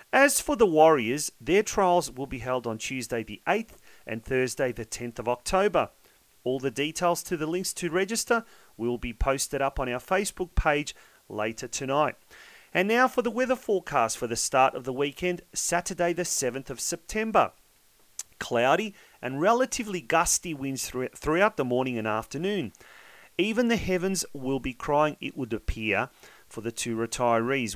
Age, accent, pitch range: 40-59, Australian, 125-185 Hz